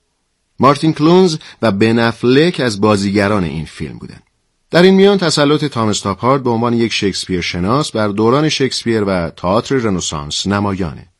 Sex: male